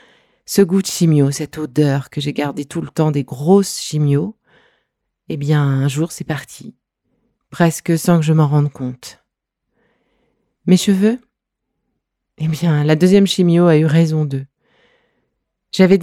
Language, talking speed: French, 150 wpm